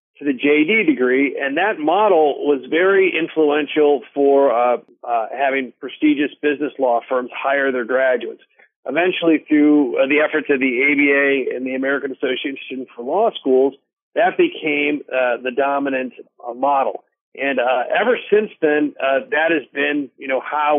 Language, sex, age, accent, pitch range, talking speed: English, male, 40-59, American, 135-160 Hz, 165 wpm